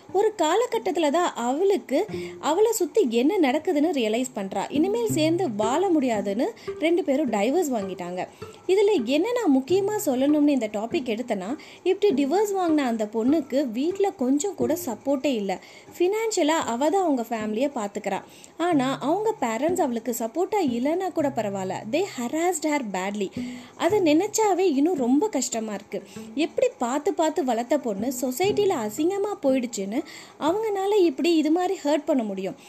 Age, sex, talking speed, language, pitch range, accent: 20-39, female, 125 wpm, Tamil, 235-355 Hz, native